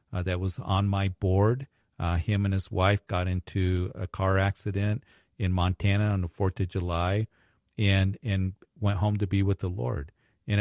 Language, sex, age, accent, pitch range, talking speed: English, male, 50-69, American, 90-110 Hz, 185 wpm